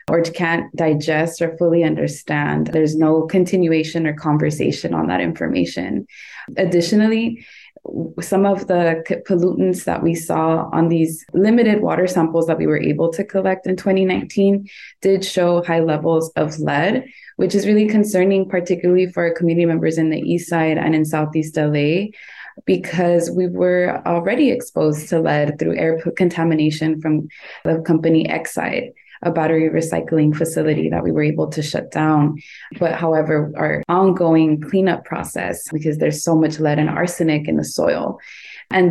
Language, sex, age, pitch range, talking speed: English, female, 20-39, 155-185 Hz, 155 wpm